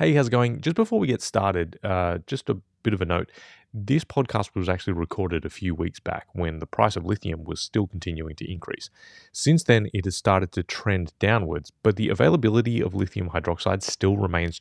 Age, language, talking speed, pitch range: 20-39, English, 210 wpm, 85-110 Hz